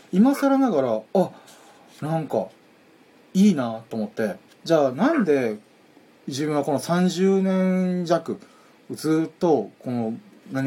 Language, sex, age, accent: Japanese, male, 30-49, native